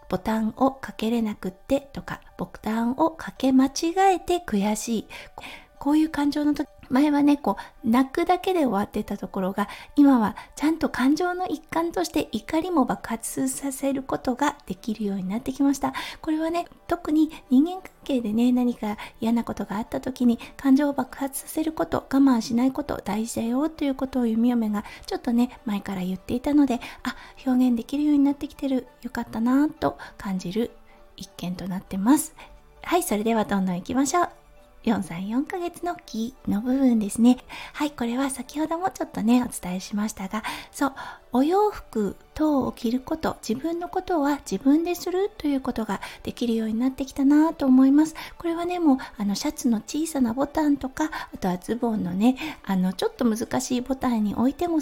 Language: Japanese